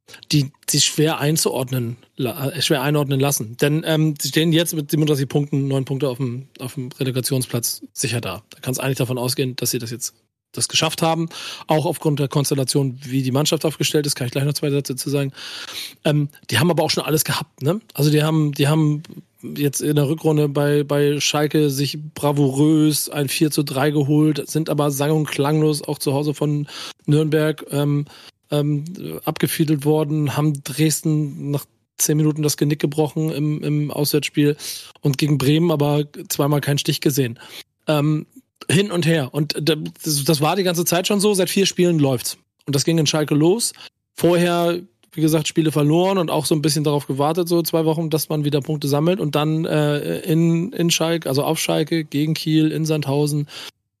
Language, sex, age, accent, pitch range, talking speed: German, male, 40-59, German, 140-160 Hz, 190 wpm